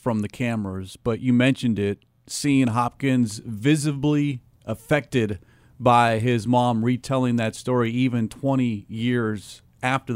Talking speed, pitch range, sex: 125 wpm, 125-150 Hz, male